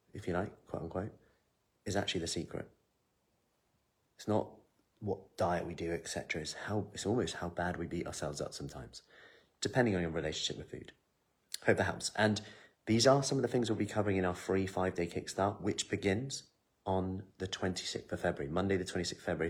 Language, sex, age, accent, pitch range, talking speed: English, male, 30-49, British, 85-100 Hz, 195 wpm